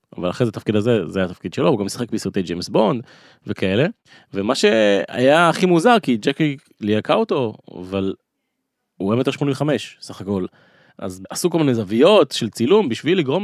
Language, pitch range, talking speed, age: Hebrew, 100-135 Hz, 180 wpm, 30-49